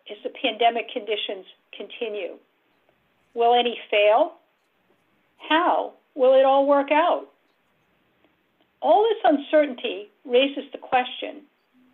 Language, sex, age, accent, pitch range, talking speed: English, female, 50-69, American, 230-305 Hz, 100 wpm